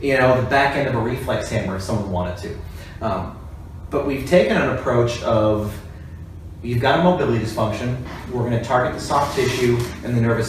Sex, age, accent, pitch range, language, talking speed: male, 30-49, American, 105-130 Hz, English, 200 wpm